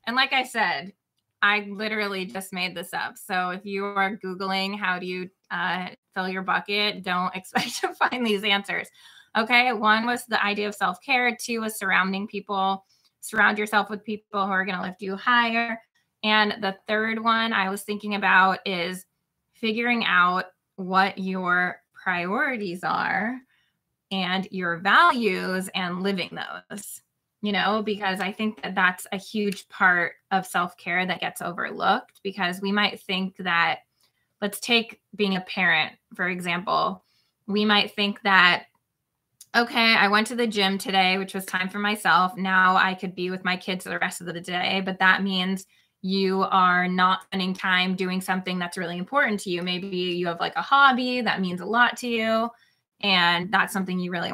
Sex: female